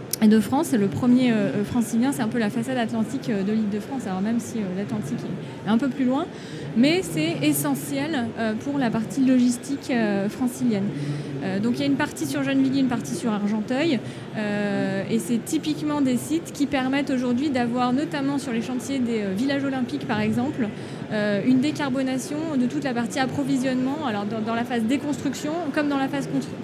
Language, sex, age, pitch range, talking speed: French, female, 20-39, 215-265 Hz, 200 wpm